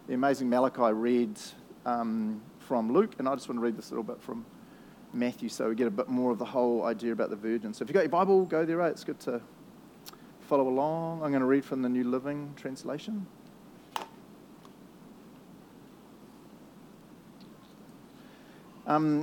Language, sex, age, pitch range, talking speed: English, male, 40-59, 125-165 Hz, 170 wpm